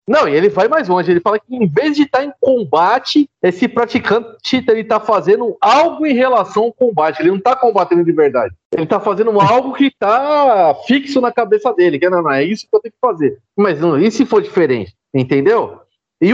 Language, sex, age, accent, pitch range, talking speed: Portuguese, male, 40-59, Brazilian, 185-255 Hz, 225 wpm